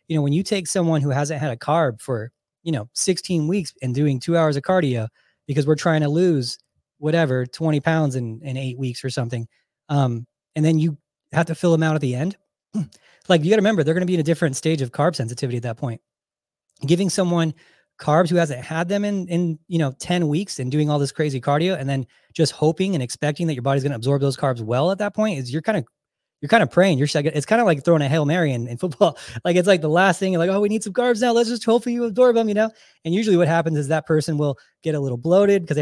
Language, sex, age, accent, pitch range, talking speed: English, male, 20-39, American, 145-185 Hz, 270 wpm